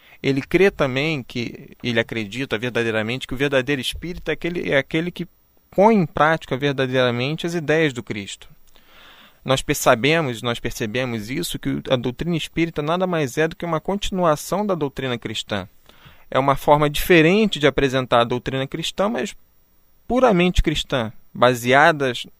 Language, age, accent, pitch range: Portuguese, 20-39, Brazilian, 125-170 Hz